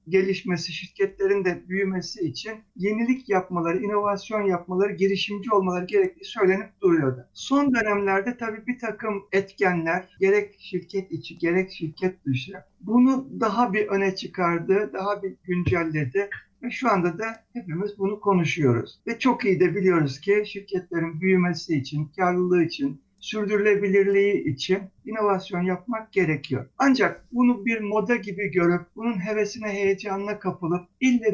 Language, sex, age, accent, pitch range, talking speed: Turkish, male, 60-79, native, 180-215 Hz, 130 wpm